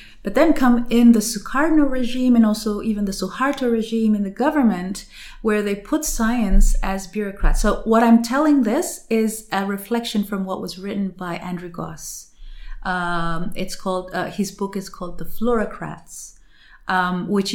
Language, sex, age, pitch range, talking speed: English, female, 30-49, 180-225 Hz, 170 wpm